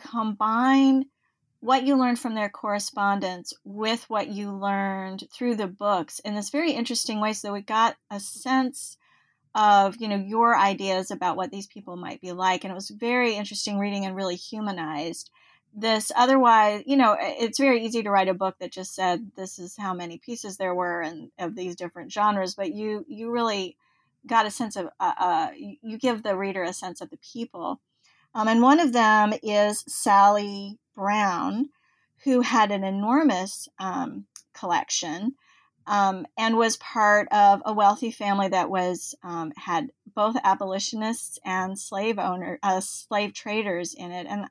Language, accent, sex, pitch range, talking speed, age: English, American, female, 190-235 Hz, 170 wpm, 30-49